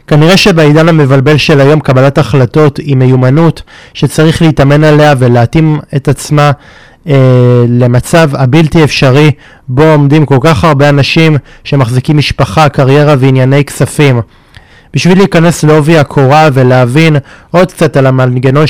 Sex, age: male, 20-39